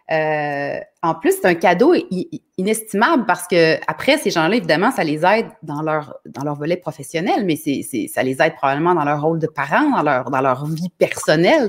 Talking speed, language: 205 wpm, French